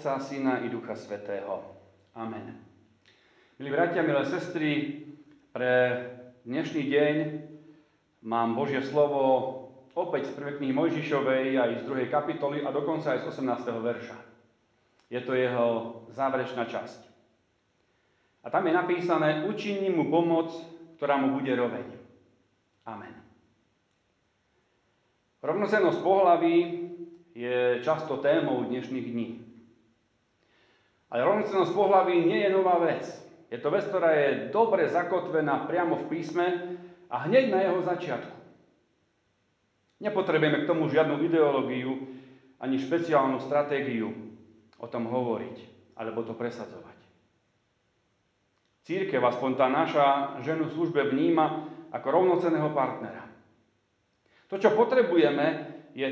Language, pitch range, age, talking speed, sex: Slovak, 120-165 Hz, 40-59, 110 wpm, male